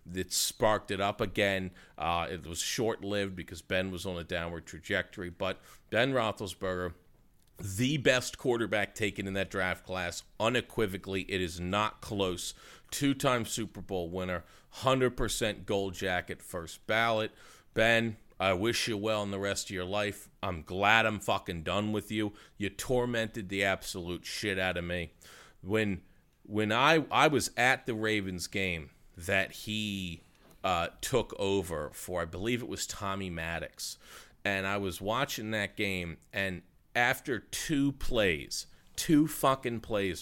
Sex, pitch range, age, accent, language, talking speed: male, 90-110 Hz, 40-59, American, English, 150 wpm